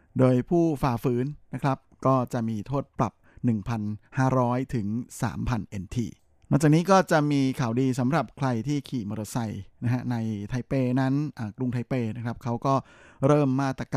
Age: 20-39